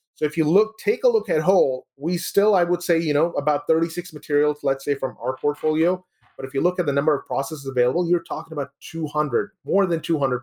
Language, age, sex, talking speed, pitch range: English, 30-49, male, 235 wpm, 130-165 Hz